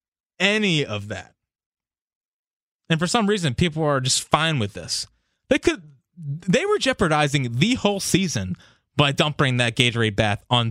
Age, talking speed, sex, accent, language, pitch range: 20-39, 150 wpm, male, American, English, 115-175 Hz